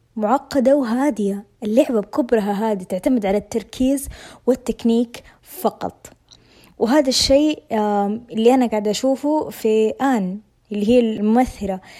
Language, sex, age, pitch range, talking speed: Arabic, female, 20-39, 205-250 Hz, 105 wpm